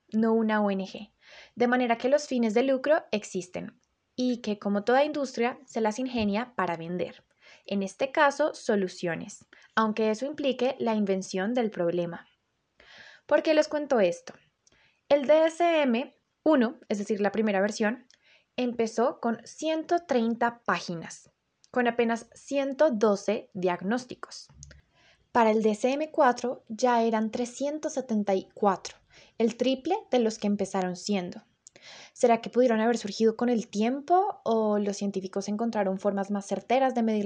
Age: 20-39